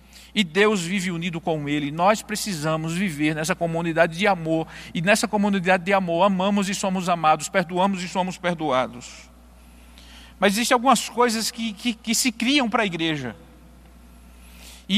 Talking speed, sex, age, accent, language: 155 wpm, male, 50-69, Brazilian, Portuguese